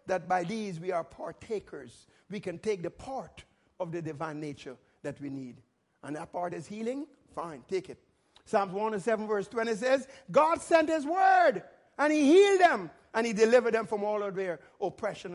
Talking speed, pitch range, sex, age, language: 195 wpm, 205-275 Hz, male, 50-69, English